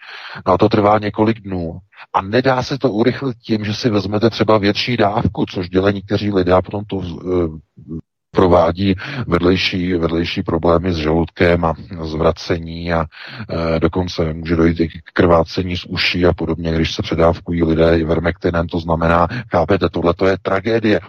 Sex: male